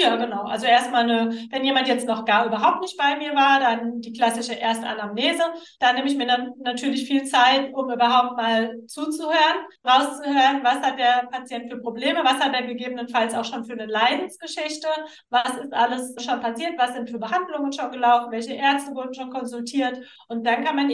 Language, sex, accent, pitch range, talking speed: German, female, German, 240-275 Hz, 190 wpm